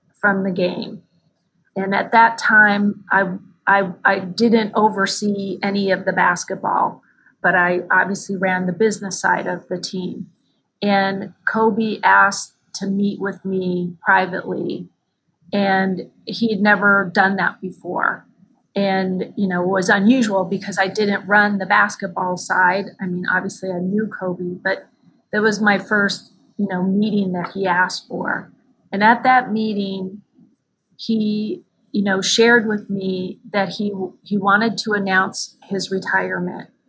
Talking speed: 145 wpm